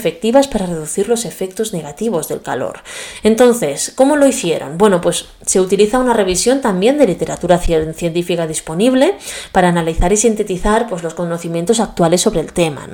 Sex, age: female, 20-39